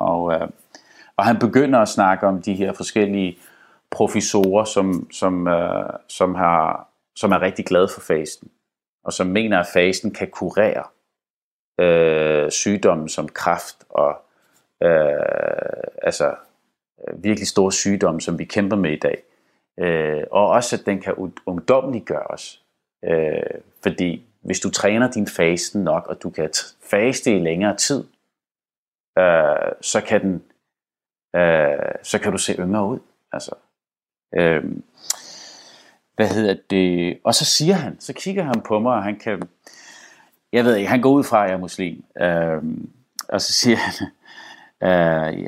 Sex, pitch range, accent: male, 90-135 Hz, native